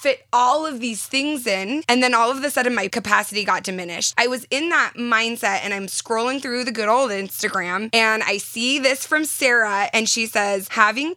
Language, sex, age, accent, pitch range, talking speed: English, female, 20-39, American, 210-255 Hz, 210 wpm